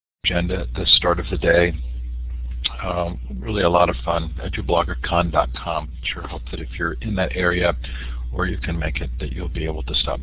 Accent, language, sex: American, English, male